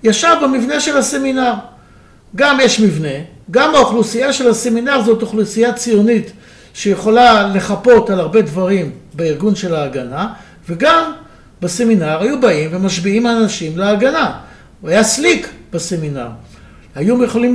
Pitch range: 180-240 Hz